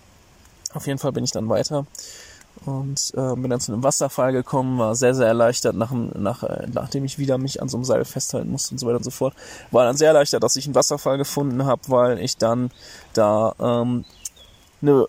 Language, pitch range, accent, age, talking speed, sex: German, 120-145 Hz, German, 20-39, 205 wpm, male